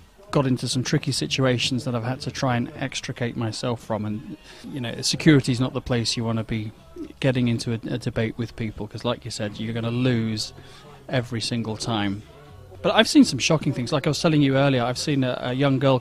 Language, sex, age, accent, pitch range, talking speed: English, male, 30-49, British, 120-145 Hz, 230 wpm